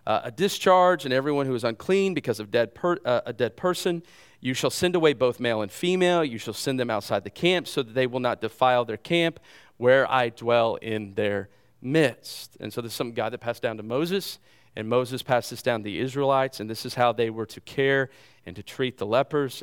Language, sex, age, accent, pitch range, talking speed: English, male, 40-59, American, 115-155 Hz, 225 wpm